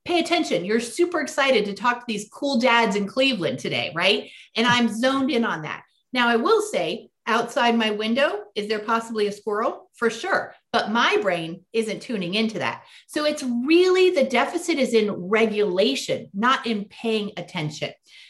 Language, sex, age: English, female, 30-49